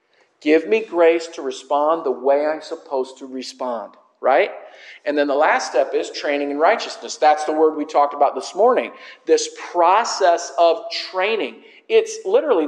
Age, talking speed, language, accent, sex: 50-69, 165 wpm, English, American, male